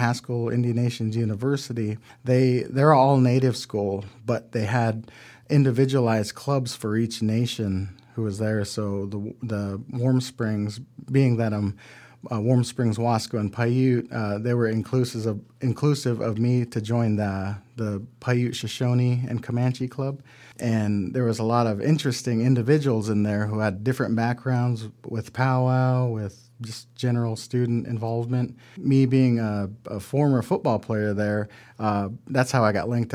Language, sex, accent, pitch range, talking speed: English, male, American, 105-125 Hz, 160 wpm